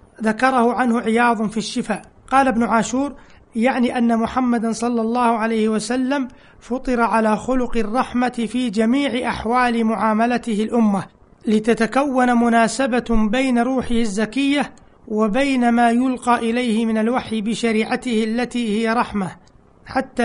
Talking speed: 120 wpm